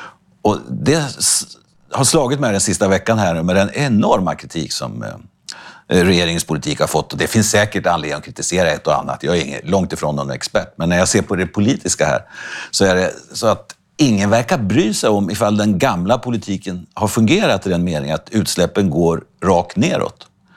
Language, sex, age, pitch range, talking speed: Swedish, male, 60-79, 90-120 Hz, 190 wpm